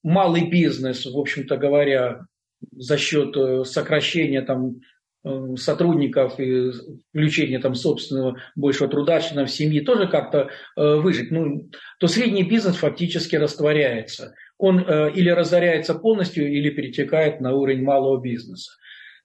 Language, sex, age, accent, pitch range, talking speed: Russian, male, 40-59, native, 140-180 Hz, 115 wpm